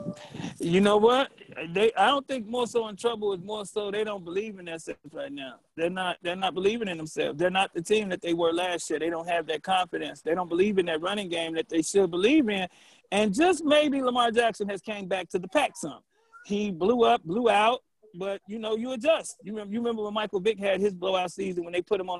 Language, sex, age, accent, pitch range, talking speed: English, male, 40-59, American, 180-230 Hz, 245 wpm